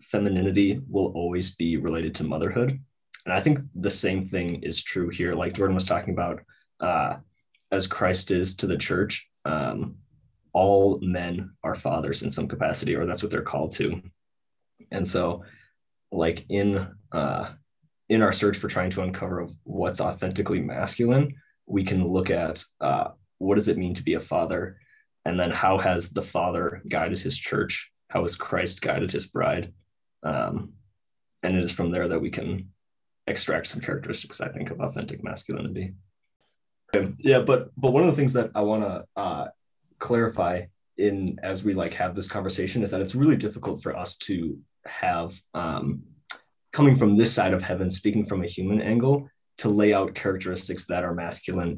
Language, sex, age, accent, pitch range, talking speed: English, male, 20-39, American, 90-105 Hz, 175 wpm